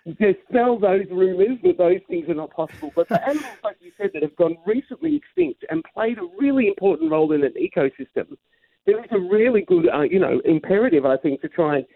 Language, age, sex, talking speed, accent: English, 40-59, male, 215 wpm, British